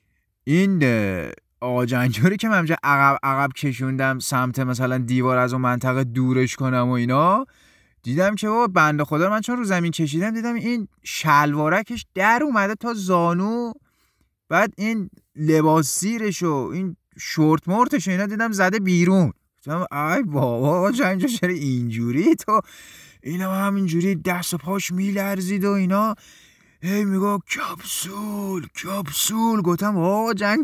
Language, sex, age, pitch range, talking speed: Persian, male, 30-49, 155-215 Hz, 130 wpm